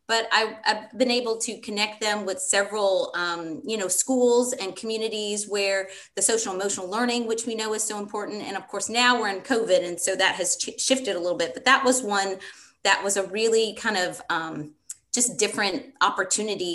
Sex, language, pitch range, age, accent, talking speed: female, English, 190-230 Hz, 30-49, American, 195 wpm